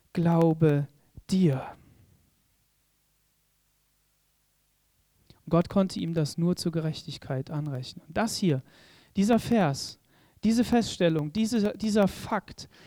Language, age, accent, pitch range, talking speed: German, 40-59, German, 155-210 Hz, 85 wpm